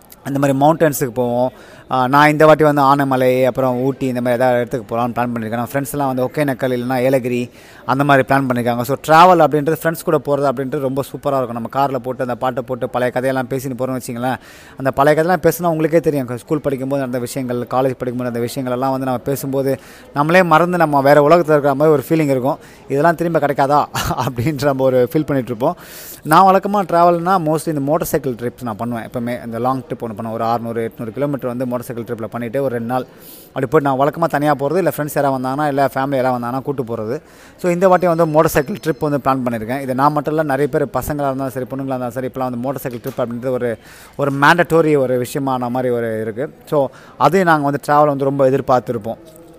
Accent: native